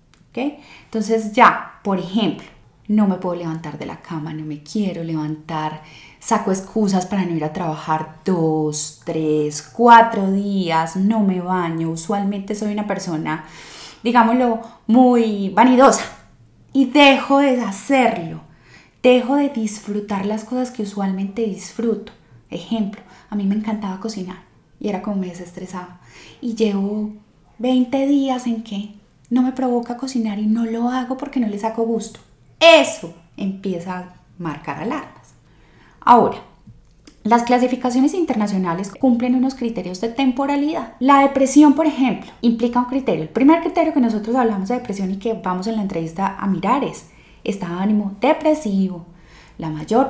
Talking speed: 145 wpm